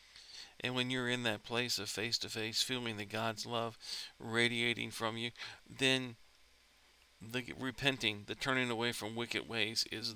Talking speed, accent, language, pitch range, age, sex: 160 wpm, American, English, 100-120 Hz, 50-69, male